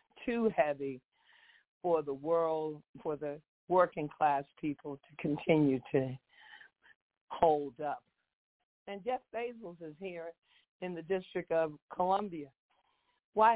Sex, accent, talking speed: female, American, 115 wpm